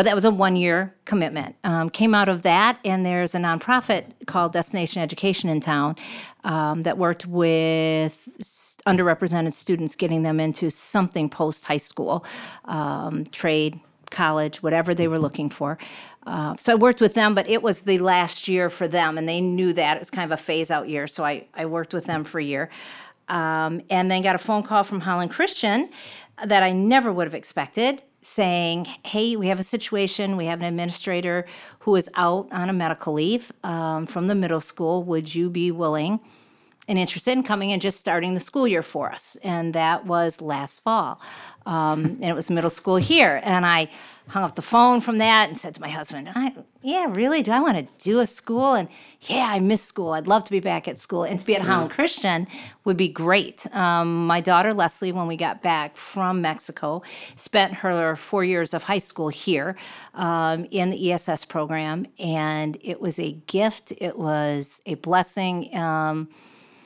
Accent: American